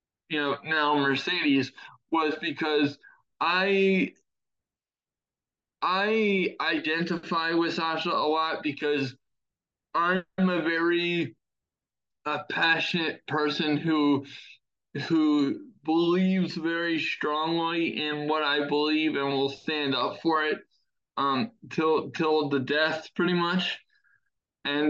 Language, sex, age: English, male, 20-39